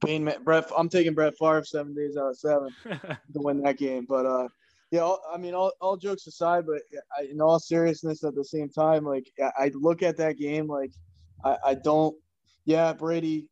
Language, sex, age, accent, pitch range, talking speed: English, male, 20-39, American, 140-155 Hz, 190 wpm